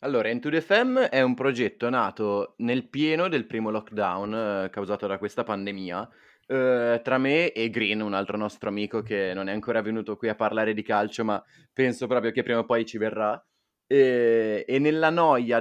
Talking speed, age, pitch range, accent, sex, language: 190 wpm, 20-39, 105-135 Hz, native, male, Italian